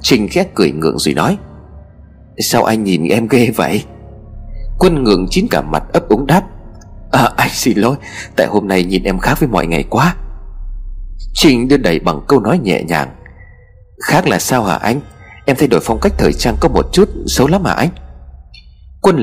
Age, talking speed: 30-49, 195 wpm